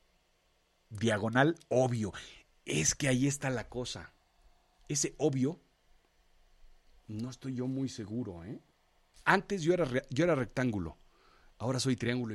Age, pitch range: 40-59, 100-130 Hz